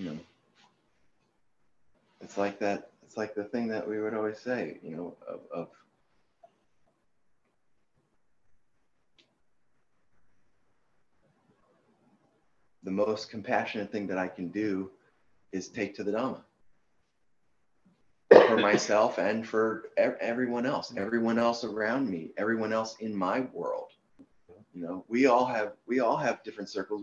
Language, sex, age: English, male, 30-49